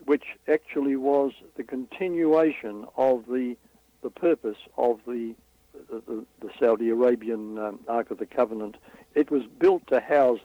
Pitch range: 115-140 Hz